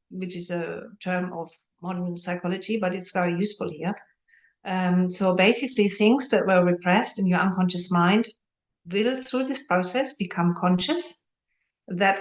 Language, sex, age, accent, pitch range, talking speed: English, female, 50-69, German, 175-200 Hz, 145 wpm